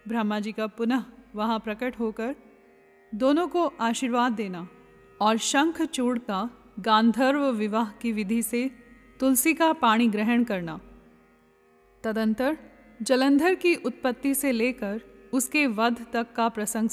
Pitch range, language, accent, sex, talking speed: 215-265 Hz, Hindi, native, female, 130 wpm